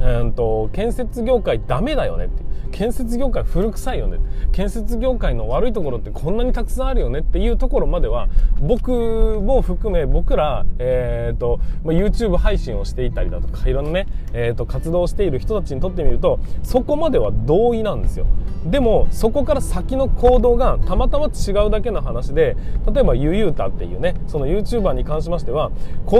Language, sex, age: Japanese, male, 20-39